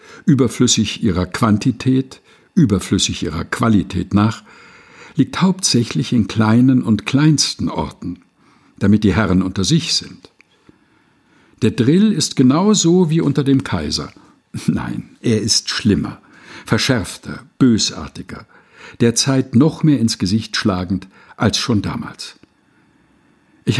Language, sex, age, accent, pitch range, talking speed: German, male, 60-79, German, 105-150 Hz, 110 wpm